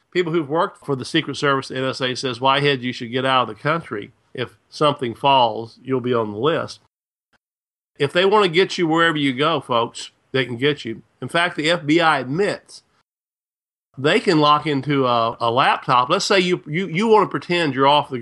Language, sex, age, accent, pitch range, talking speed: English, male, 50-69, American, 130-155 Hz, 210 wpm